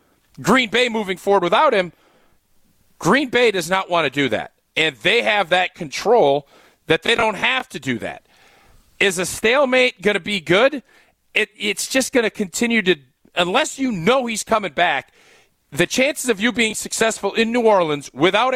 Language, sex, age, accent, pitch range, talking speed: English, male, 40-59, American, 175-225 Hz, 180 wpm